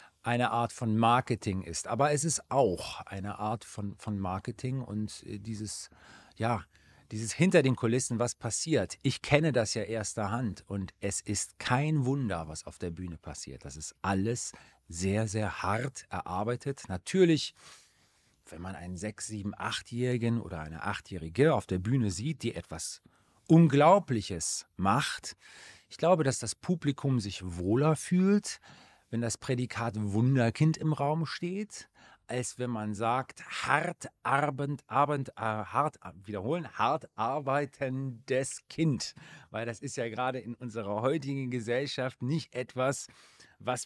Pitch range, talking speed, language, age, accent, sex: 105-140 Hz, 140 wpm, German, 40-59, German, male